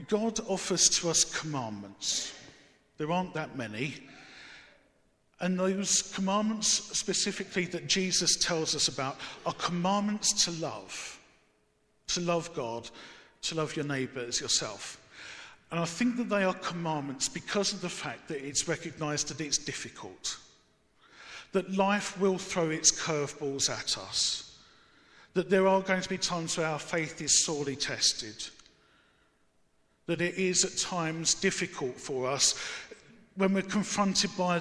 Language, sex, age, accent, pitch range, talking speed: English, male, 50-69, British, 145-185 Hz, 140 wpm